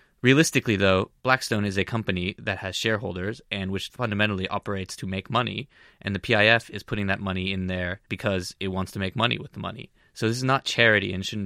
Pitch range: 95-115 Hz